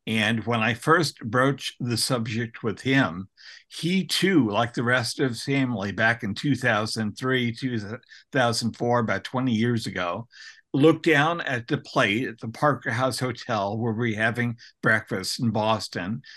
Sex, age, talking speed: male, 60-79, 150 wpm